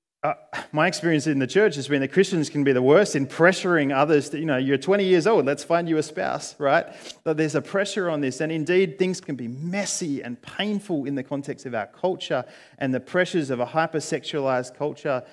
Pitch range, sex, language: 125-160 Hz, male, English